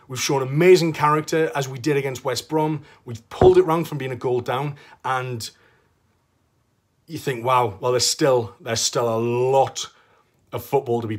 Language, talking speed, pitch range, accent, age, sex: English, 180 wpm, 120-175 Hz, British, 30-49, male